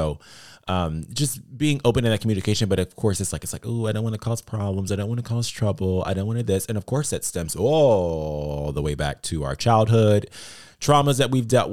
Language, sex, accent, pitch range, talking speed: English, male, American, 80-110 Hz, 250 wpm